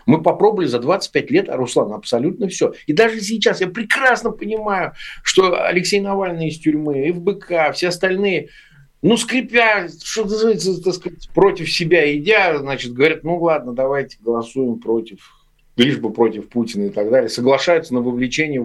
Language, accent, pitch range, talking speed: Russian, native, 140-200 Hz, 150 wpm